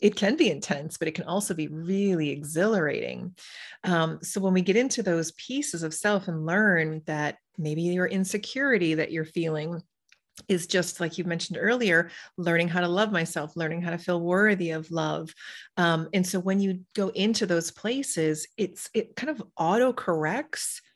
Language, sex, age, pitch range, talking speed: English, female, 30-49, 160-190 Hz, 175 wpm